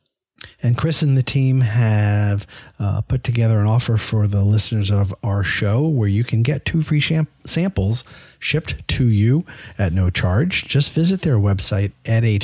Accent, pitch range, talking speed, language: American, 100-120 Hz, 175 wpm, English